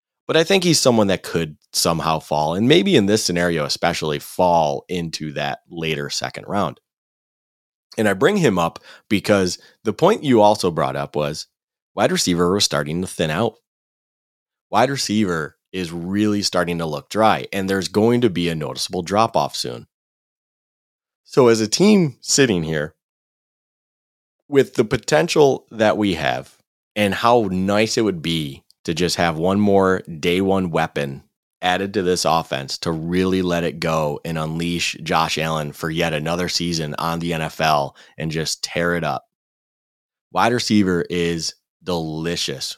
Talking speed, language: 160 wpm, English